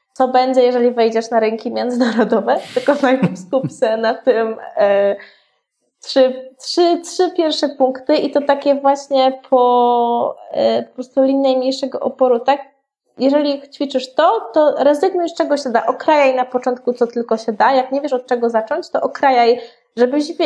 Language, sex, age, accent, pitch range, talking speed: Polish, female, 20-39, native, 230-275 Hz, 165 wpm